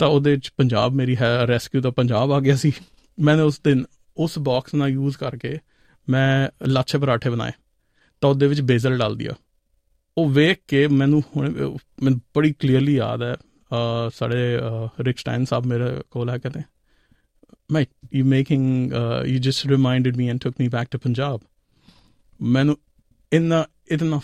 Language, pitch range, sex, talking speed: Punjabi, 125-145 Hz, male, 150 wpm